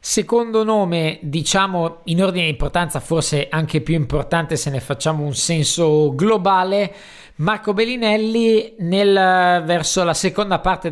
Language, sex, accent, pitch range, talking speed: Italian, male, native, 150-185 Hz, 125 wpm